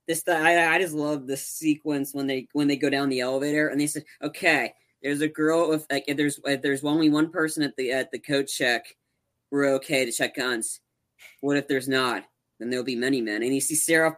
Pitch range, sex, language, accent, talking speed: 145-200 Hz, female, English, American, 235 wpm